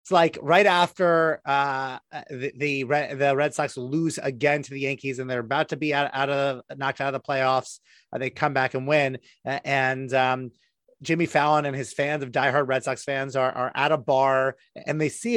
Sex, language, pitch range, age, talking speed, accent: male, English, 140-185 Hz, 30-49, 220 wpm, American